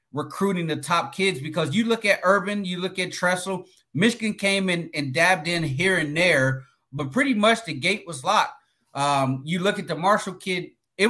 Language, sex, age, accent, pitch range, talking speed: English, male, 30-49, American, 155-195 Hz, 200 wpm